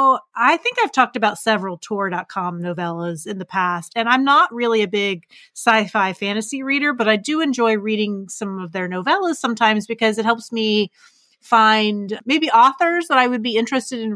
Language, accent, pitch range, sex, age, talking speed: English, American, 195-250 Hz, female, 30-49, 180 wpm